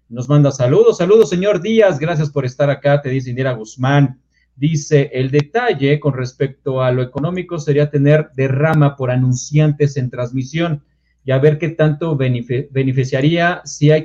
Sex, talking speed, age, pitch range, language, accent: male, 160 wpm, 40-59, 130-150 Hz, Spanish, Mexican